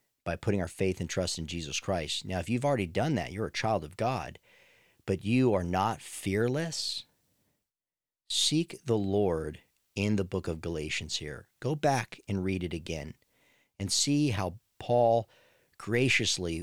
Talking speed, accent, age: 160 wpm, American, 50-69